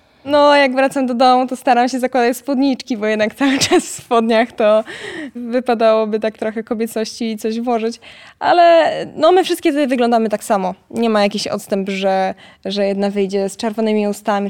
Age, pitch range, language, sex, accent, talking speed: 20-39, 205-260 Hz, Polish, female, native, 180 wpm